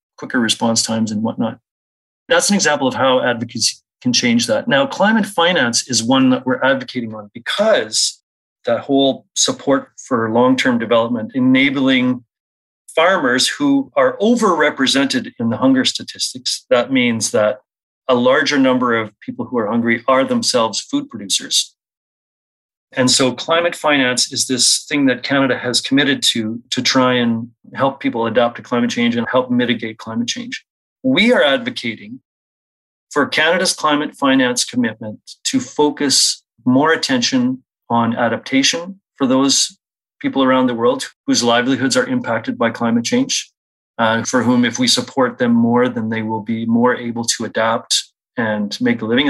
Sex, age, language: male, 30-49, English